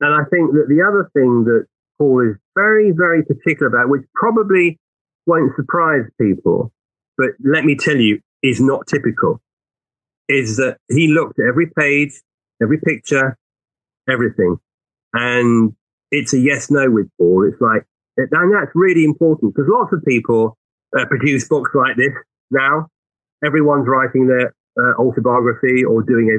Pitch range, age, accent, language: 120-150 Hz, 30-49, British, English